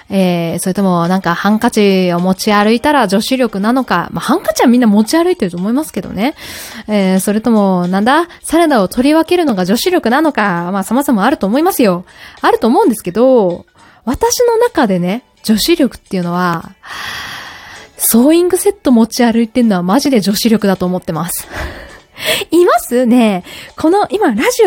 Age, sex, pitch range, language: 20-39, female, 210-345 Hz, Japanese